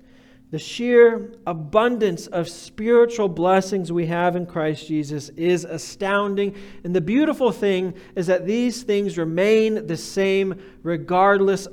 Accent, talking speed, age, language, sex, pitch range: American, 130 wpm, 40-59, English, male, 150-200 Hz